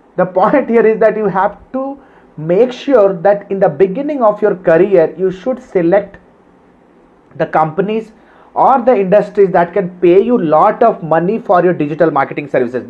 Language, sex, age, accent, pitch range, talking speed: Hindi, male, 30-49, native, 190-240 Hz, 170 wpm